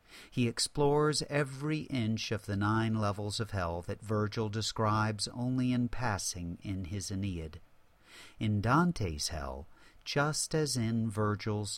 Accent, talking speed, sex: American, 130 wpm, male